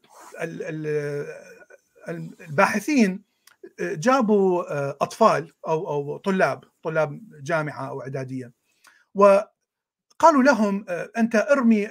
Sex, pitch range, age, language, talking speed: male, 160-225 Hz, 50-69, Arabic, 65 wpm